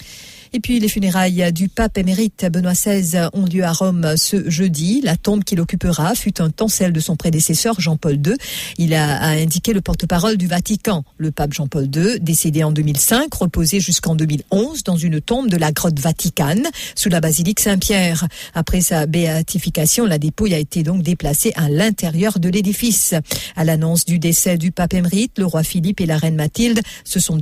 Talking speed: 190 wpm